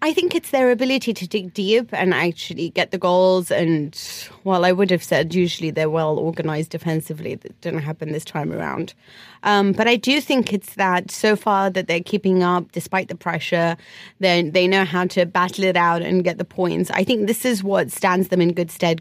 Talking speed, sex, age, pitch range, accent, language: 215 wpm, female, 20-39, 170-200 Hz, British, English